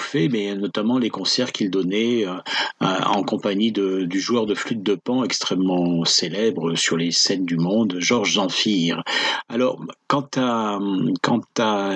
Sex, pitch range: male, 95-130 Hz